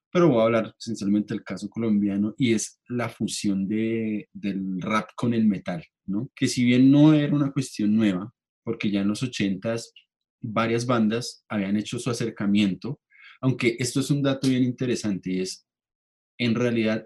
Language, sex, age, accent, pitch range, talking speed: Spanish, male, 20-39, Colombian, 105-130 Hz, 170 wpm